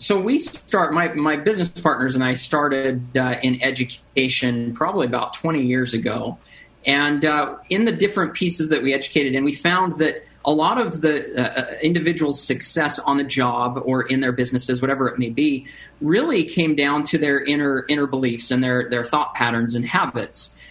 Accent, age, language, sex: American, 40-59, English, male